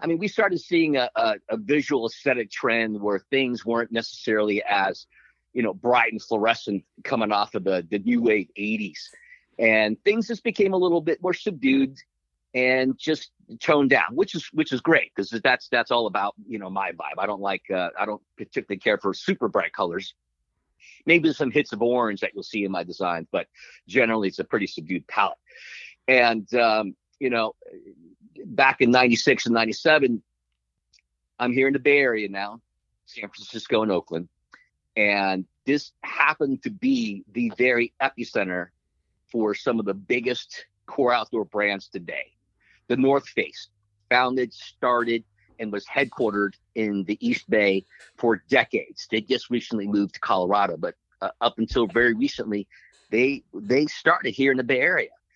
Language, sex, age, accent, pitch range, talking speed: English, male, 50-69, American, 100-135 Hz, 170 wpm